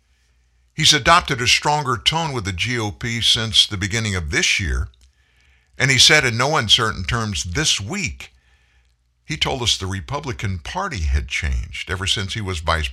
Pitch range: 75-120 Hz